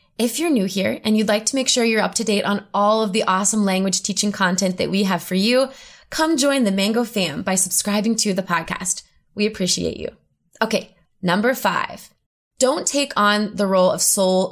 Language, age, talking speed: English, 20-39, 205 wpm